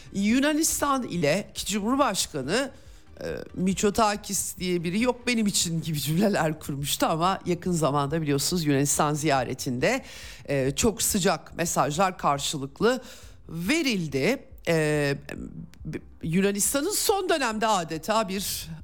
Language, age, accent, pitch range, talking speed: Turkish, 50-69, native, 145-195 Hz, 100 wpm